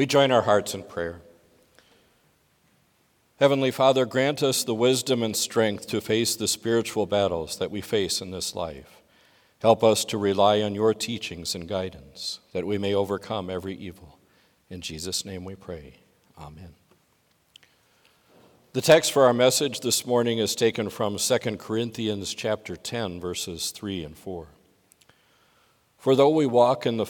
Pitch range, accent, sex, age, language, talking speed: 95-120 Hz, American, male, 50-69, English, 155 wpm